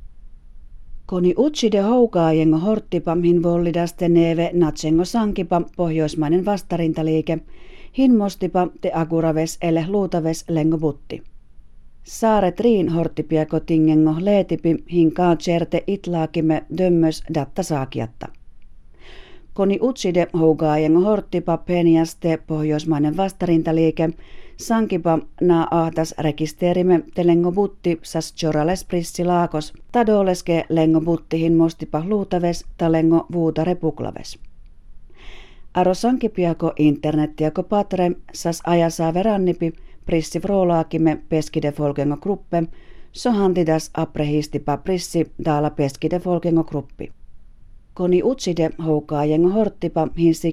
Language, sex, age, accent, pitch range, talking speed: Finnish, female, 40-59, native, 155-180 Hz, 80 wpm